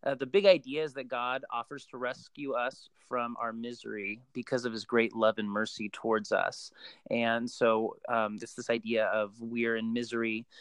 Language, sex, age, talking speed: English, male, 30-49, 185 wpm